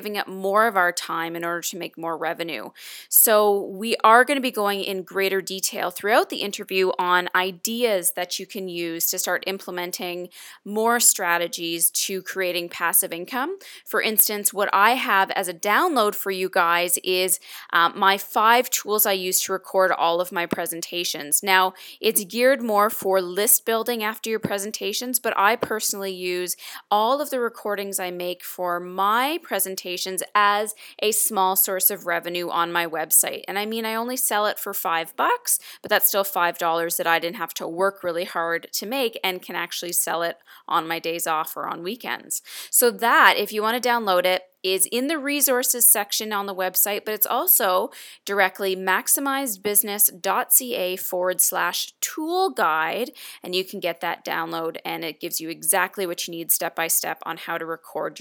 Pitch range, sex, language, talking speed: 175-210 Hz, female, English, 180 wpm